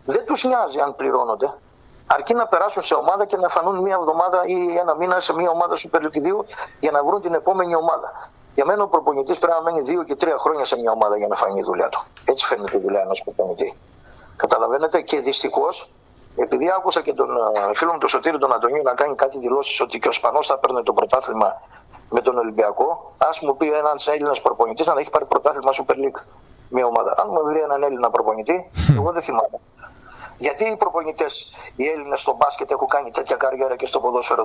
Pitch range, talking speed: 150-220 Hz, 215 wpm